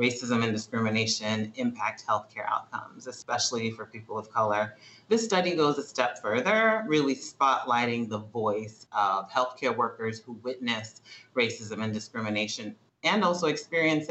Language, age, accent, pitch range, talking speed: English, 30-49, American, 115-135 Hz, 135 wpm